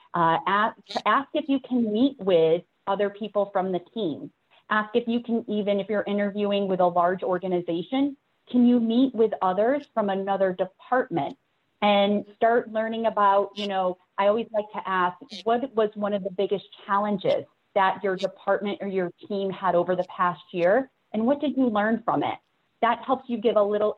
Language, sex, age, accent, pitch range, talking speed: English, female, 30-49, American, 180-220 Hz, 190 wpm